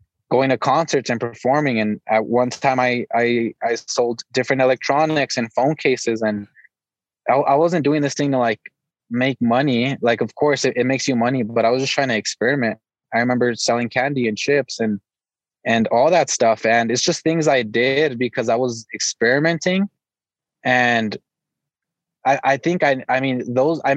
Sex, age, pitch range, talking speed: male, 20-39, 120-145 Hz, 185 wpm